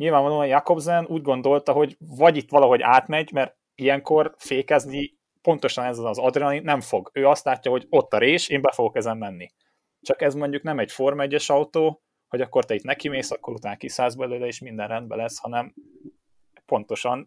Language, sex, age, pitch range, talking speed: Hungarian, male, 30-49, 110-145 Hz, 185 wpm